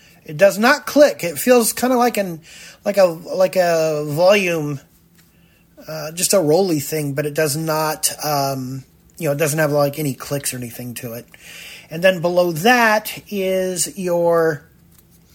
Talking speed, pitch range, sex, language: 165 wpm, 140-185 Hz, male, English